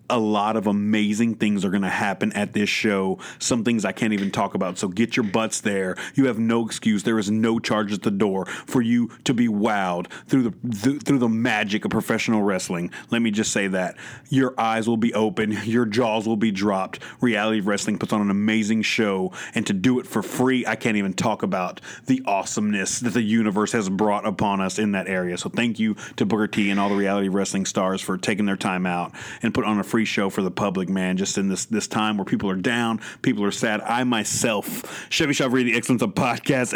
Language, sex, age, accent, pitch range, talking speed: English, male, 30-49, American, 100-115 Hz, 230 wpm